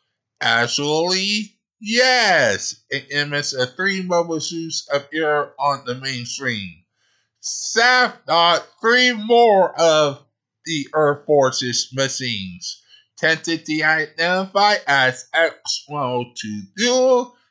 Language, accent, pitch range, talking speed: English, American, 130-190 Hz, 90 wpm